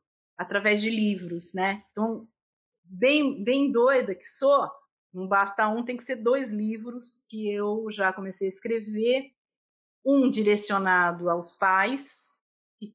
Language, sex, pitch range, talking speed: Portuguese, female, 190-255 Hz, 135 wpm